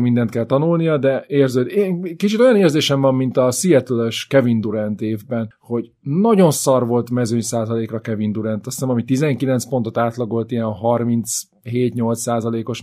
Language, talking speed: Hungarian, 155 wpm